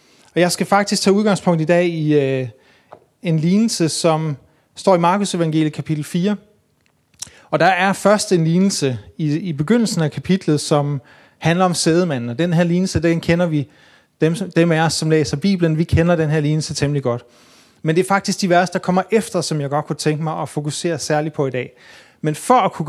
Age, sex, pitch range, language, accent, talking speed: 30-49, male, 150-185 Hz, Danish, native, 210 wpm